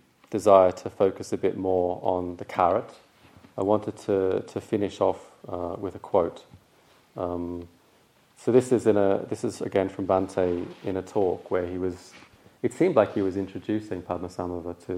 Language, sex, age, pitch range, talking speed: English, male, 30-49, 85-105 Hz, 175 wpm